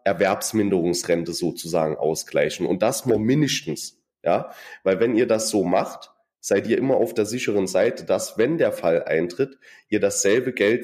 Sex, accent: male, German